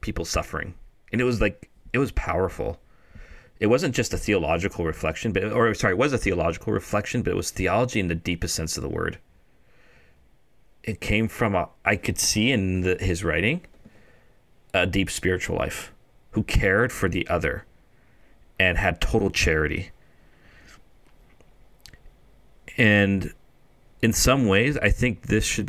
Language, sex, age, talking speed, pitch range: English, male, 40-59, 155 wpm, 90-120 Hz